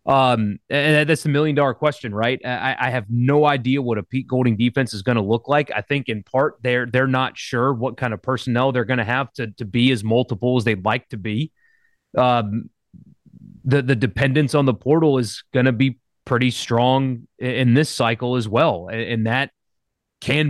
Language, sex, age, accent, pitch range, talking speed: English, male, 30-49, American, 120-150 Hz, 205 wpm